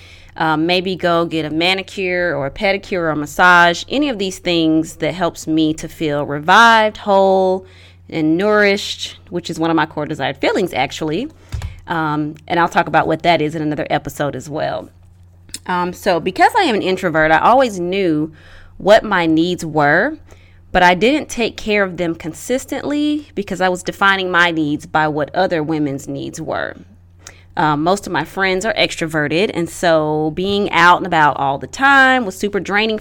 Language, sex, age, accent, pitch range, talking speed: English, female, 20-39, American, 150-190 Hz, 180 wpm